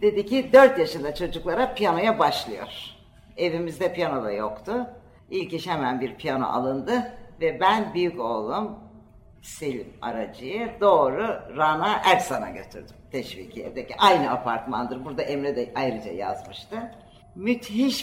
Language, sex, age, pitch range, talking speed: Turkish, female, 60-79, 130-195 Hz, 125 wpm